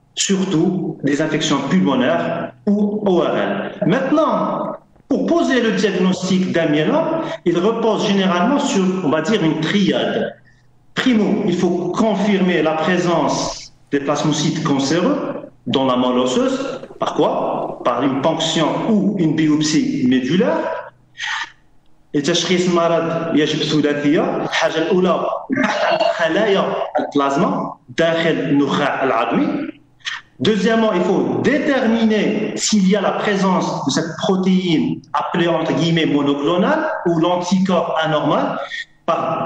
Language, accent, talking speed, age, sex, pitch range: French, French, 95 wpm, 40-59, male, 160-215 Hz